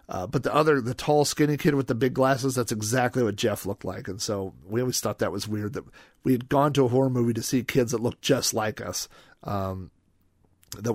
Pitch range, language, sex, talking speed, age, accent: 105-145 Hz, English, male, 240 wpm, 40-59, American